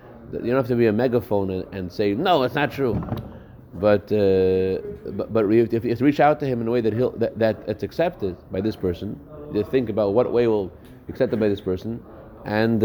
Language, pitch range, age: English, 100-125 Hz, 30-49